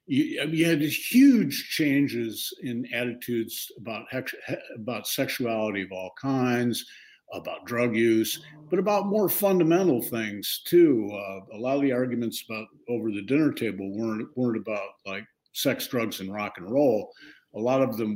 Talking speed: 155 wpm